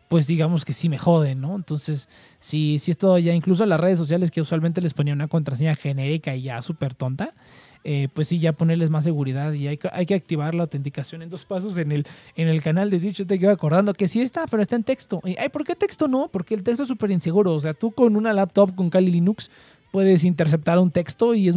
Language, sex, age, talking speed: Spanish, male, 20-39, 250 wpm